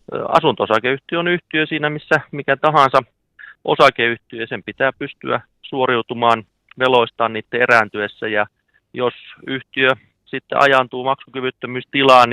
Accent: native